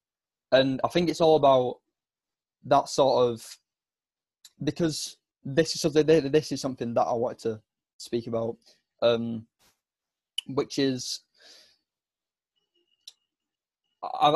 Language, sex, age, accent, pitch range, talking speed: English, male, 20-39, British, 120-150 Hz, 110 wpm